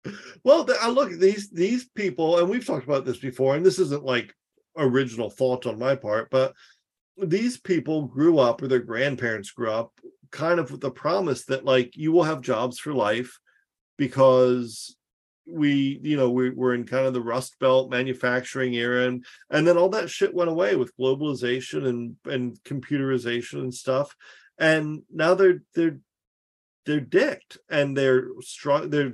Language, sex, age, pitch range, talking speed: English, male, 40-59, 125-160 Hz, 175 wpm